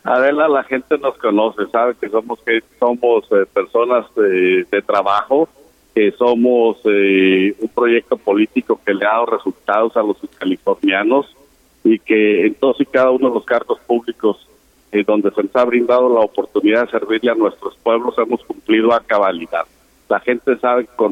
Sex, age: male, 50-69